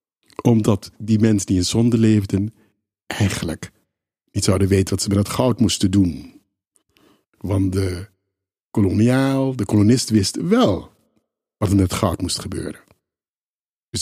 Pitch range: 100-135 Hz